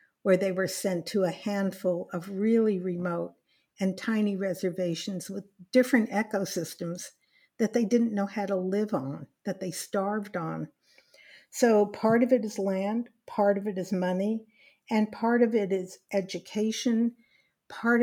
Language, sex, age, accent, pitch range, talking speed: English, female, 60-79, American, 180-220 Hz, 155 wpm